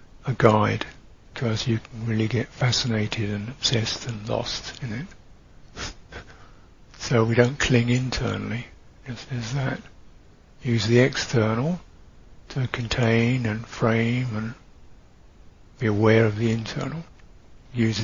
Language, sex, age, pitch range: English, male, 60-79, 105-130 Hz